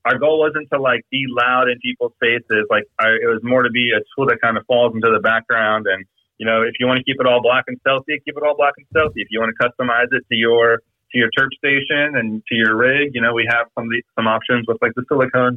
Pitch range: 115-140 Hz